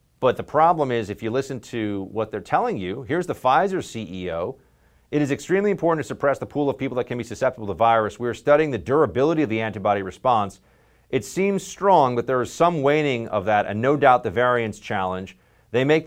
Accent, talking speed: American, 220 wpm